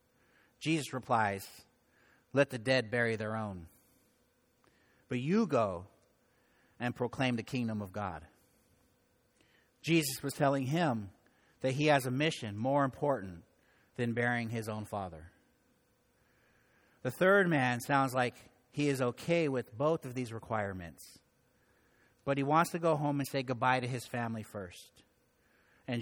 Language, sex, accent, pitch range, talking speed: English, male, American, 110-135 Hz, 140 wpm